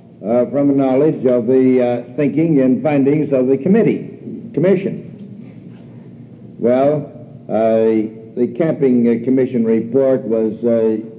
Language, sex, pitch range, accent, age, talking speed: English, male, 120-145 Hz, American, 60-79, 120 wpm